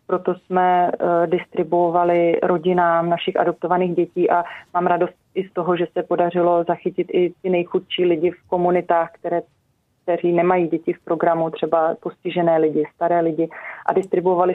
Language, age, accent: Czech, 30-49, native